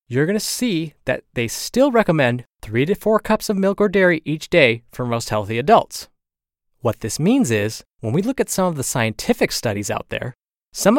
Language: English